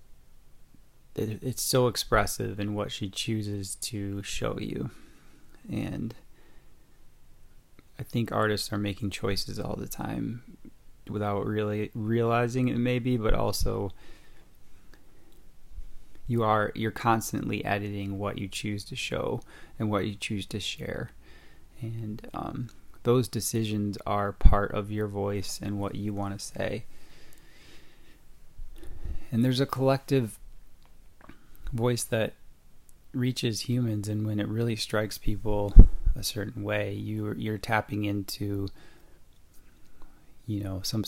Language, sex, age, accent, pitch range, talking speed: English, male, 20-39, American, 100-110 Hz, 120 wpm